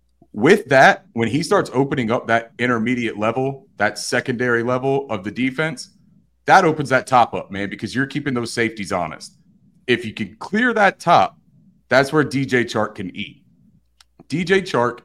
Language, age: English, 30-49